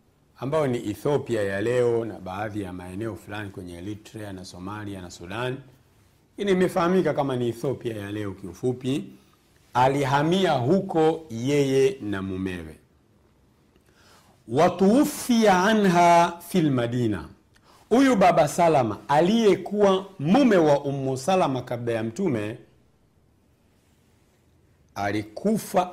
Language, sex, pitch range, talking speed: Swahili, male, 100-150 Hz, 105 wpm